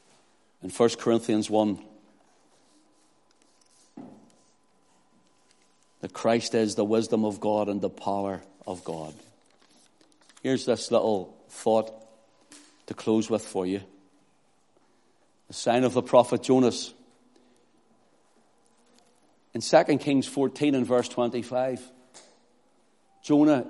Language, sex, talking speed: English, male, 100 wpm